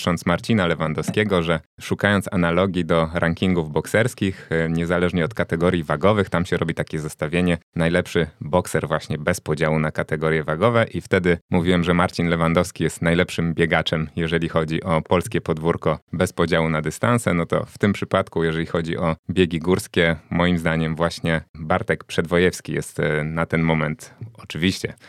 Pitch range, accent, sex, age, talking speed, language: 80-95 Hz, native, male, 20-39, 150 wpm, Polish